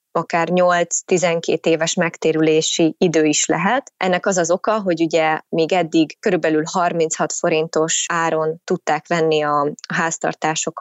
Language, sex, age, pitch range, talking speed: Hungarian, female, 20-39, 165-190 Hz, 130 wpm